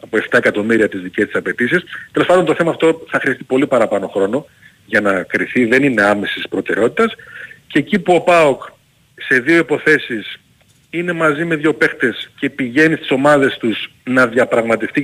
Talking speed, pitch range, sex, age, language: 175 wpm, 115-165 Hz, male, 40-59, Greek